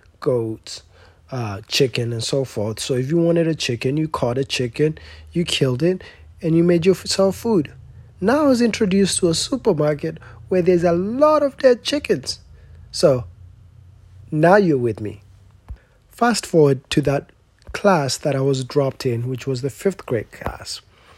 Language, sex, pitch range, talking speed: English, male, 115-170 Hz, 165 wpm